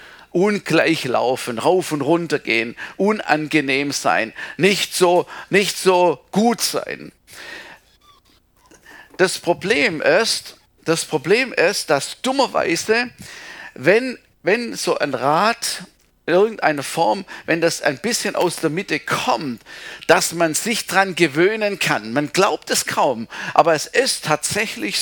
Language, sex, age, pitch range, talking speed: German, male, 50-69, 150-200 Hz, 120 wpm